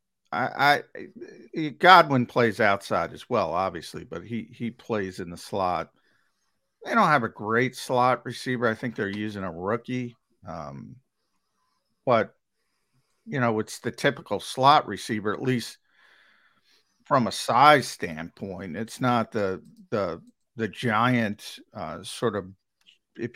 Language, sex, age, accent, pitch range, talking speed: English, male, 50-69, American, 100-120 Hz, 135 wpm